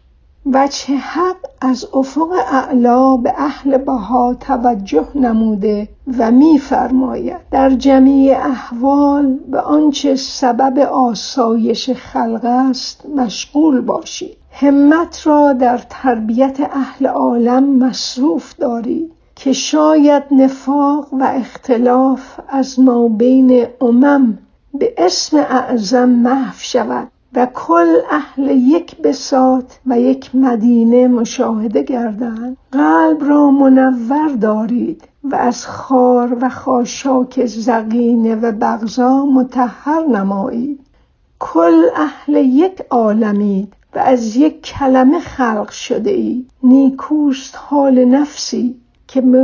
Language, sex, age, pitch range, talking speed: Persian, female, 60-79, 245-275 Hz, 105 wpm